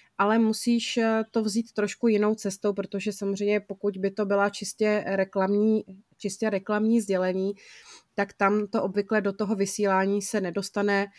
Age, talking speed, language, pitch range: 30-49, 145 wpm, Czech, 195-215 Hz